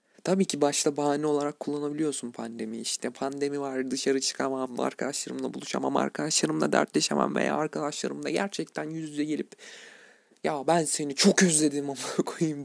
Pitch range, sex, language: 135-170 Hz, male, Turkish